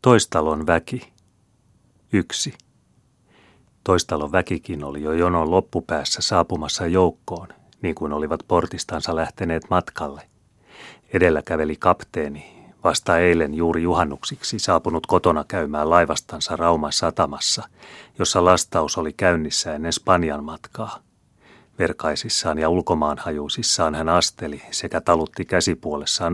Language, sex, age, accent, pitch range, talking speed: Finnish, male, 30-49, native, 75-90 Hz, 105 wpm